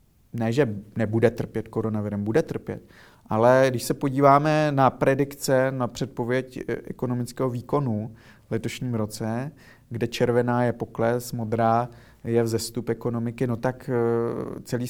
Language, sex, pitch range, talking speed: Czech, male, 115-130 Hz, 125 wpm